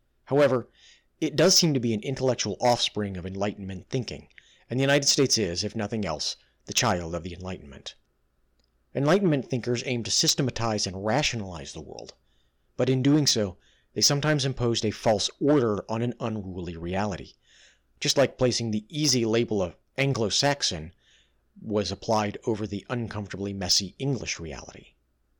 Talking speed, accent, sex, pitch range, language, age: 150 wpm, American, male, 90-125 Hz, English, 40-59